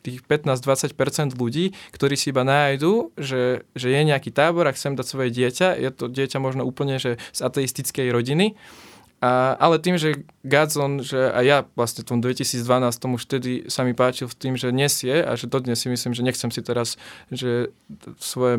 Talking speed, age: 185 wpm, 20-39